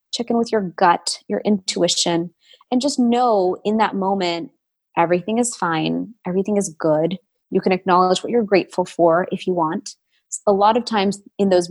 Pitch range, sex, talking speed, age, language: 170-215 Hz, female, 180 wpm, 20-39, English